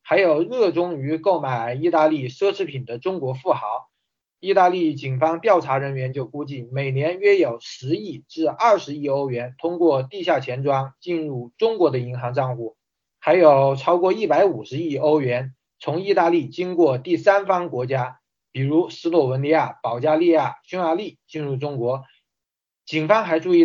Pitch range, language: 135-175 Hz, Chinese